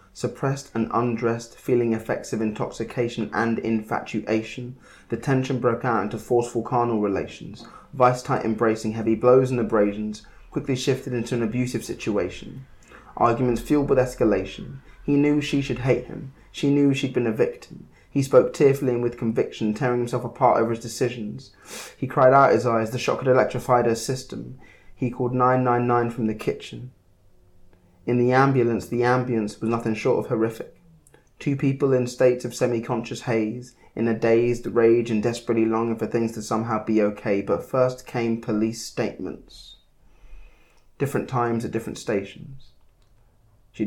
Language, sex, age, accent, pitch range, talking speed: English, male, 20-39, British, 110-125 Hz, 155 wpm